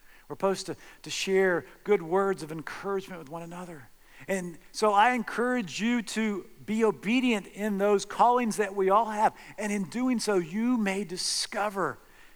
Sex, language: male, English